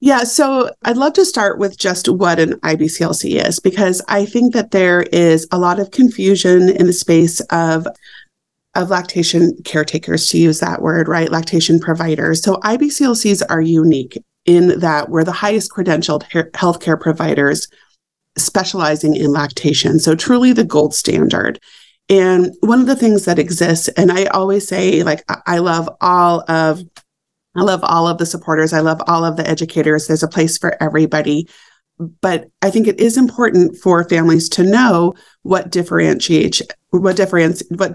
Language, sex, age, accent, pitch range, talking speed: English, female, 30-49, American, 160-200 Hz, 160 wpm